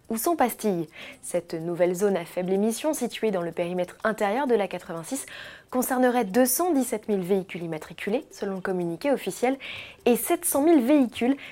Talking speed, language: 150 wpm, French